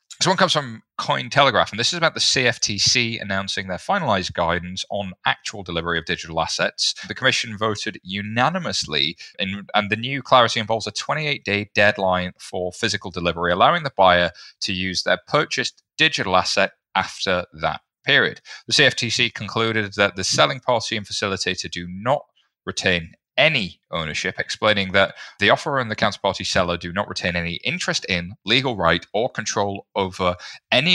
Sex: male